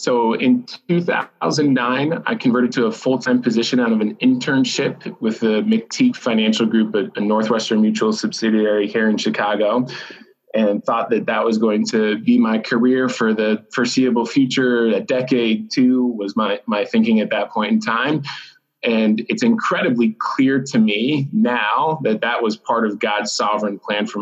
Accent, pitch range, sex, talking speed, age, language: American, 110-150 Hz, male, 170 wpm, 20-39, English